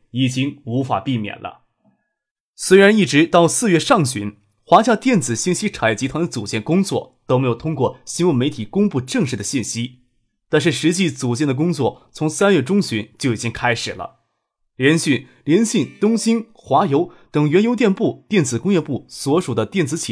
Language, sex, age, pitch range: Chinese, male, 20-39, 120-185 Hz